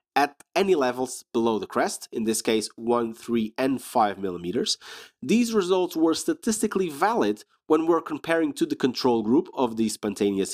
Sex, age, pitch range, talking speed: male, 30-49, 125-195 Hz, 165 wpm